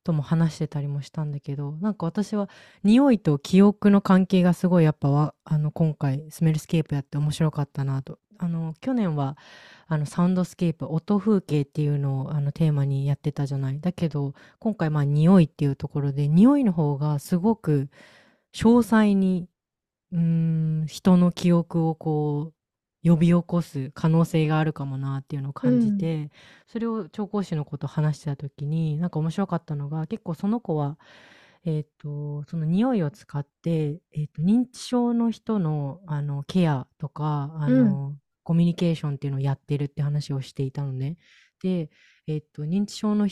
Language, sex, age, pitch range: Japanese, female, 20-39, 145-185 Hz